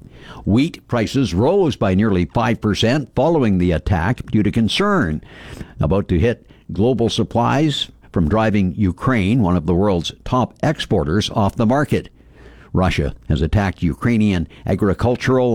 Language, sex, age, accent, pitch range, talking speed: English, male, 60-79, American, 90-120 Hz, 130 wpm